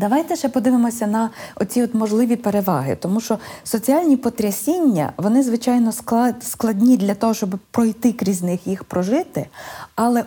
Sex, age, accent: female, 20-39, native